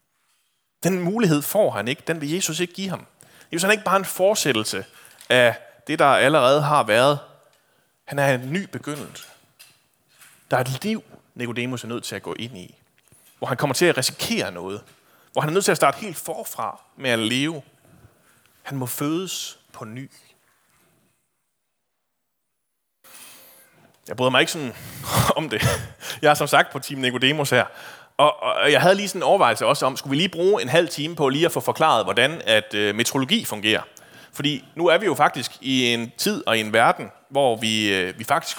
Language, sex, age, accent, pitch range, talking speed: Danish, male, 30-49, native, 125-170 Hz, 190 wpm